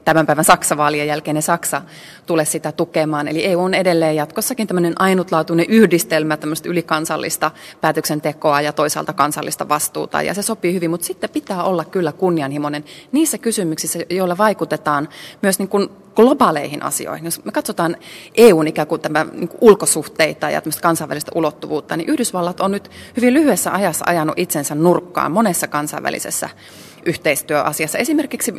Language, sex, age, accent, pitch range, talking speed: Finnish, female, 30-49, native, 155-195 Hz, 140 wpm